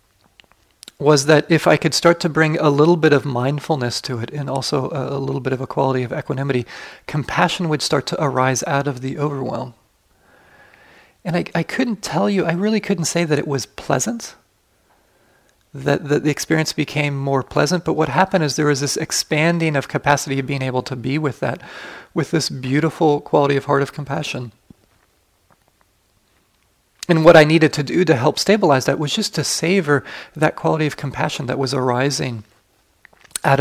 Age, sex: 30-49, male